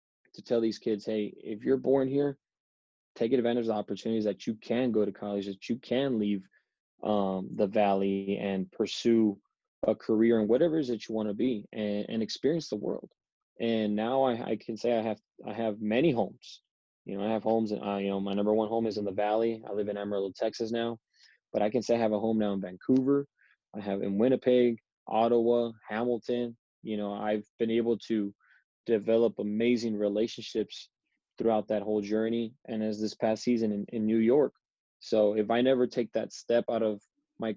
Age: 20-39